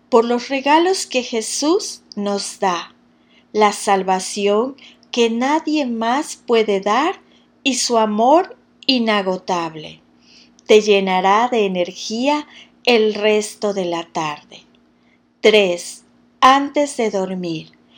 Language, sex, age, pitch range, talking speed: Spanish, female, 40-59, 195-275 Hz, 105 wpm